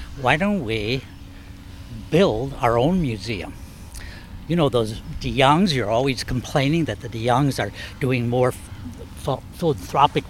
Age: 60-79